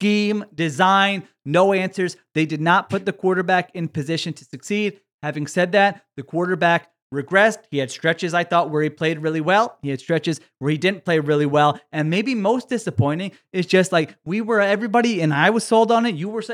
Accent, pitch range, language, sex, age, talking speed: American, 180-235 Hz, English, male, 30-49, 205 wpm